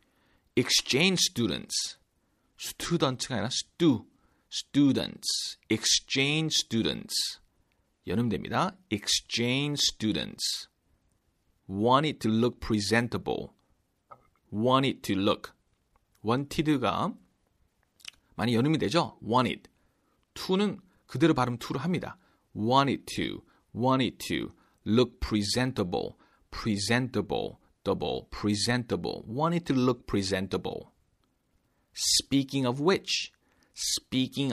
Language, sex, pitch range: Korean, male, 110-145 Hz